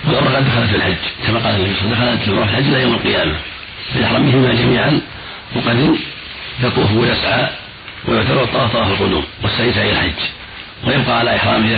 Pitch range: 105-125 Hz